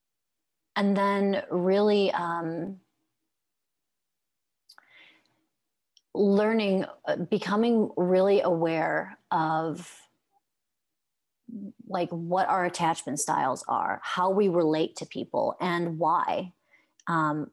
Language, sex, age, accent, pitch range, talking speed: English, female, 30-49, American, 160-190 Hz, 80 wpm